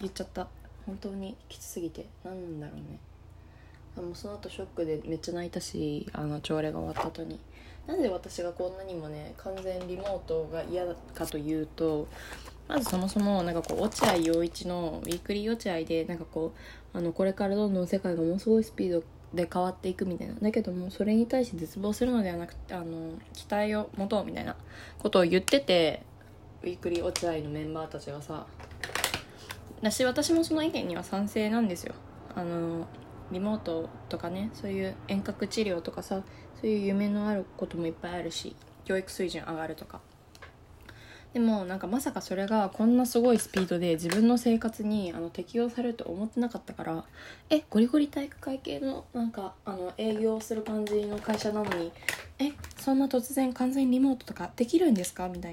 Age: 20-39